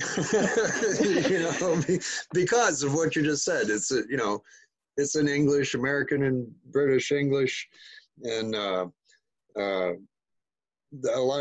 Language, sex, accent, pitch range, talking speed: English, male, American, 100-145 Hz, 125 wpm